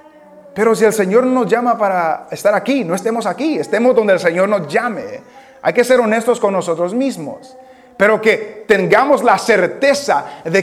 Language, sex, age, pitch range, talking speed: English, male, 40-59, 195-255 Hz, 175 wpm